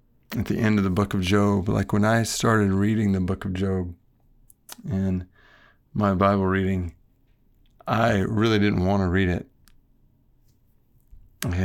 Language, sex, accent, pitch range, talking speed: English, male, American, 95-110 Hz, 150 wpm